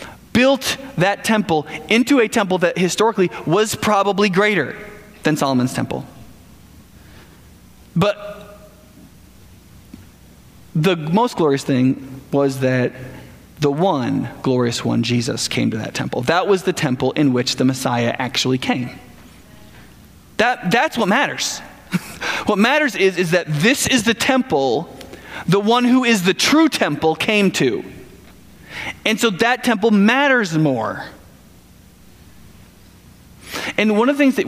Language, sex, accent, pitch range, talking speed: English, male, American, 135-210 Hz, 130 wpm